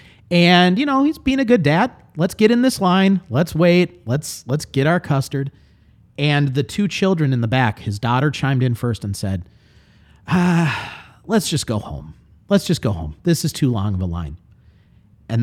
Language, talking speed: English, 200 wpm